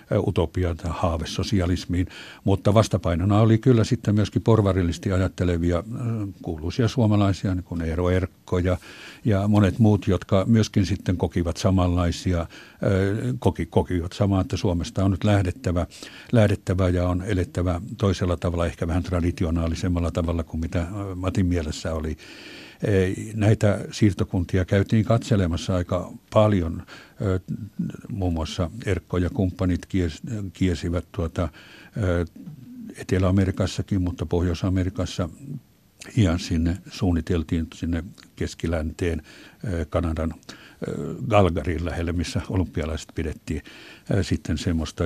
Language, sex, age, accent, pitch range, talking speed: Finnish, male, 60-79, native, 85-105 Hz, 105 wpm